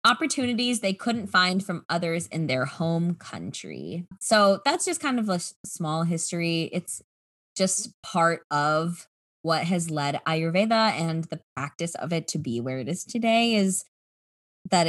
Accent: American